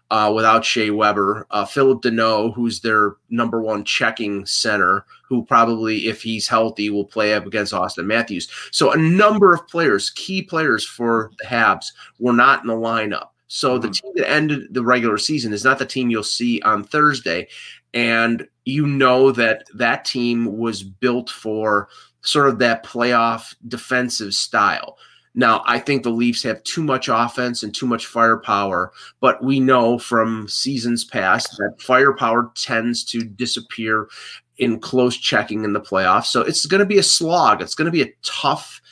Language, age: English, 30-49